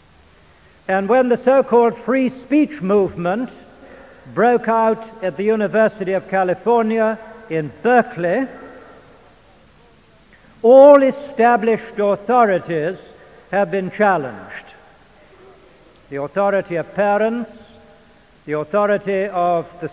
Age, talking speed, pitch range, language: 60-79, 90 wpm, 185-230 Hz, Swedish